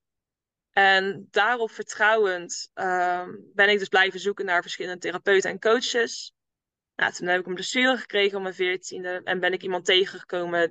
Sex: female